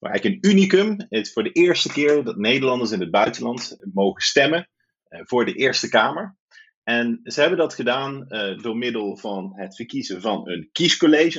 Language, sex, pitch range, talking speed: Dutch, male, 115-165 Hz, 185 wpm